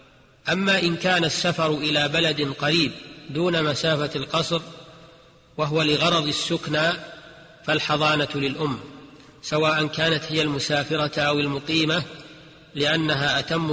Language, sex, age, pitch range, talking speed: Arabic, male, 40-59, 145-165 Hz, 100 wpm